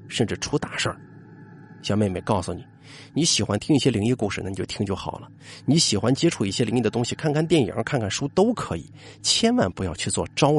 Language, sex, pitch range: Chinese, male, 100-140 Hz